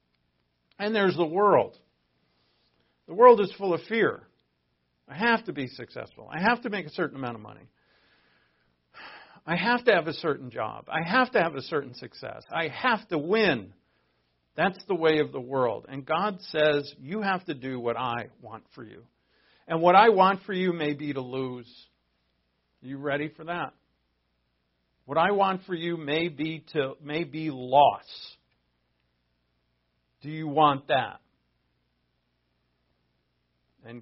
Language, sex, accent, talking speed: English, male, American, 160 wpm